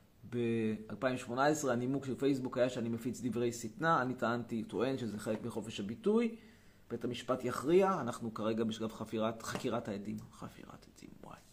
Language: Hebrew